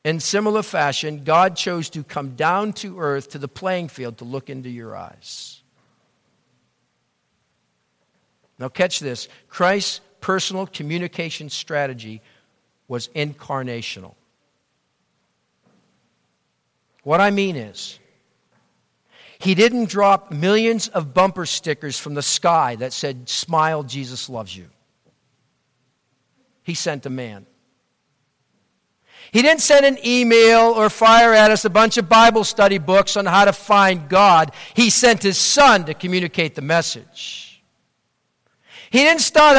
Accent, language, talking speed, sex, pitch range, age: American, English, 125 wpm, male, 150-230 Hz, 50-69